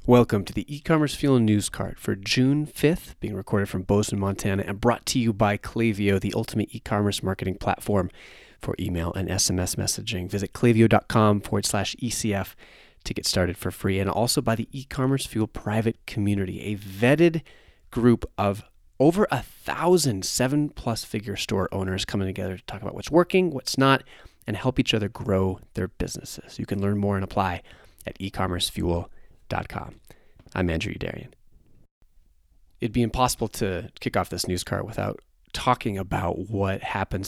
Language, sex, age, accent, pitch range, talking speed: English, male, 30-49, American, 95-120 Hz, 165 wpm